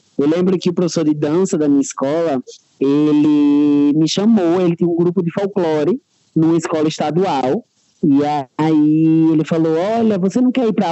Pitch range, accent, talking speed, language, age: 145-200 Hz, Brazilian, 175 wpm, Portuguese, 20-39